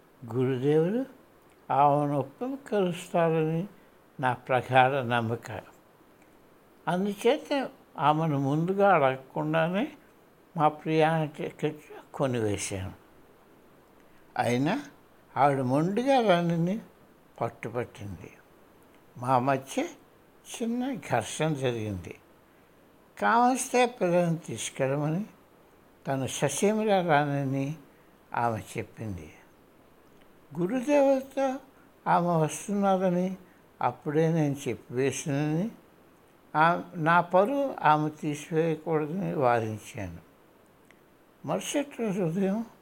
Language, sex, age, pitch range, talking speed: Hindi, male, 60-79, 135-195 Hz, 45 wpm